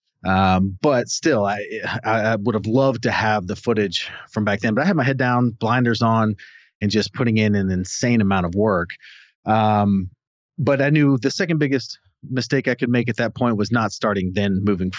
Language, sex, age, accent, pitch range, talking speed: English, male, 30-49, American, 95-115 Hz, 205 wpm